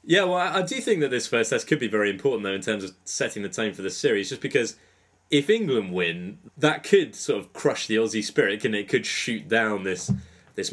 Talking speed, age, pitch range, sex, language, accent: 240 wpm, 20-39, 100-120 Hz, male, English, British